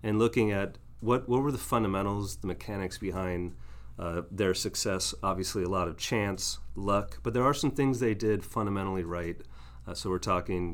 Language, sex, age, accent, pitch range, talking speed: English, male, 30-49, American, 90-105 Hz, 185 wpm